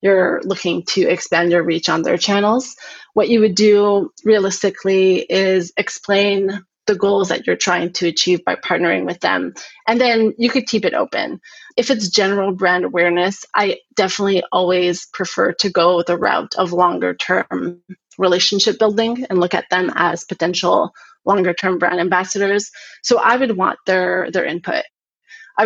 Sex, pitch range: female, 185-215 Hz